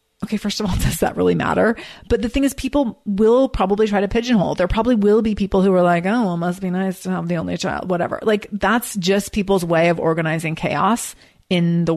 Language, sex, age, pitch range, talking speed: English, female, 30-49, 175-215 Hz, 240 wpm